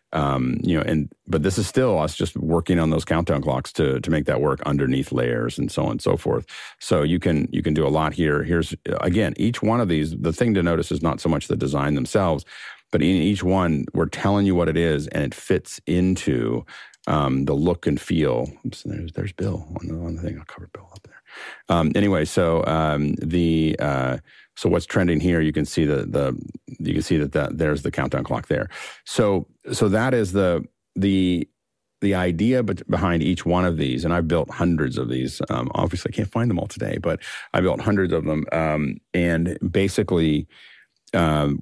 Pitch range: 75-90 Hz